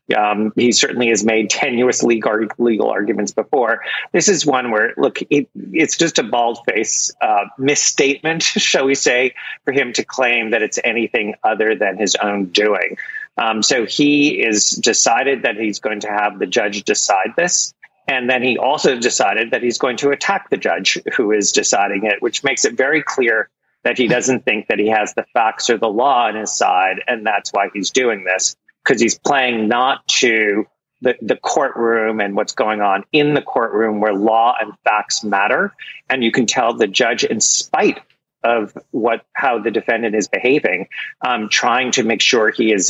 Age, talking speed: 40-59, 190 wpm